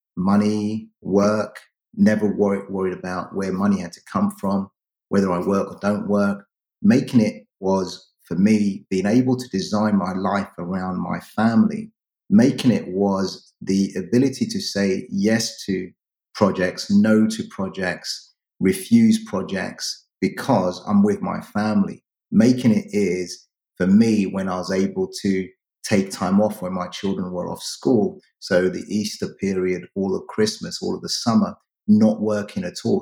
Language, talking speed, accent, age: English, 155 wpm, British, 30-49